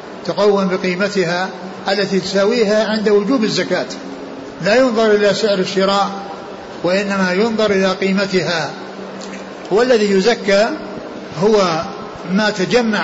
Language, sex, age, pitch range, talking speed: Arabic, male, 60-79, 190-220 Hz, 95 wpm